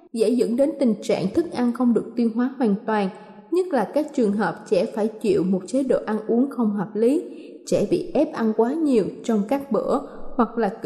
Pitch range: 230-285 Hz